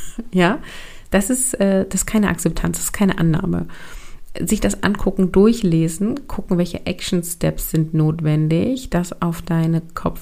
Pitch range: 160-190 Hz